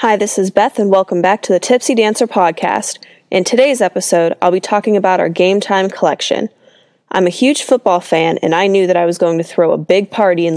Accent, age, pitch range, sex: American, 20-39, 175-215 Hz, female